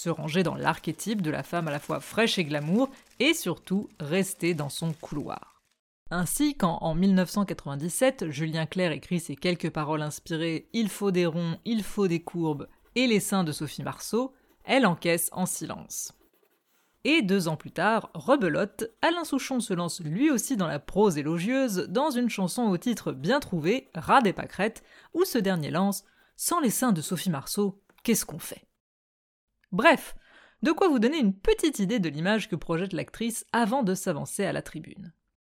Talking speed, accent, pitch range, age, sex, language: 190 wpm, French, 165-230 Hz, 20-39, female, French